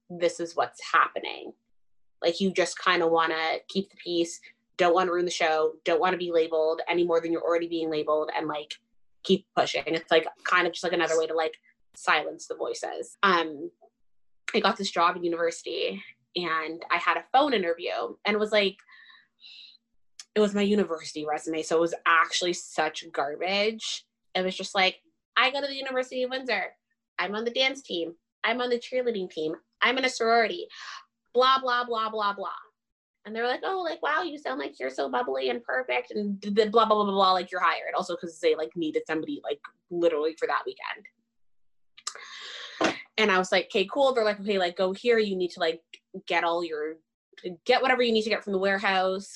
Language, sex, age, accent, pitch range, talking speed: English, female, 20-39, American, 170-230 Hz, 205 wpm